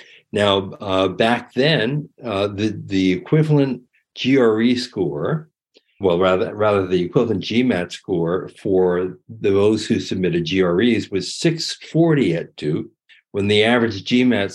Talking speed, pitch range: 125 wpm, 100-130 Hz